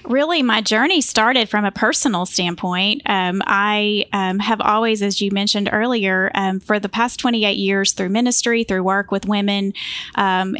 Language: English